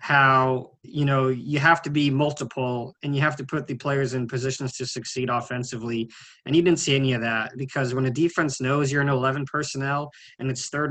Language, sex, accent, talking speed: English, male, American, 215 wpm